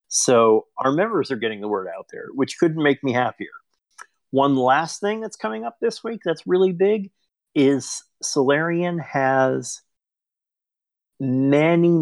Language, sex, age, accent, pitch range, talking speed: English, male, 40-59, American, 120-150 Hz, 145 wpm